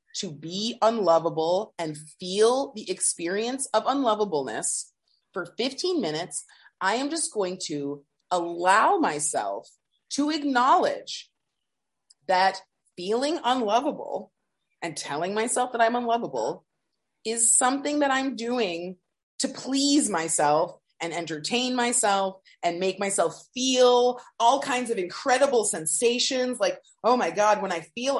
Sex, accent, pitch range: female, American, 185-250 Hz